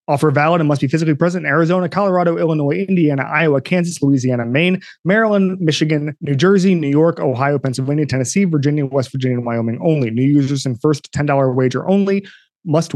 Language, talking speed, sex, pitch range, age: English, 180 wpm, male, 130-170 Hz, 30-49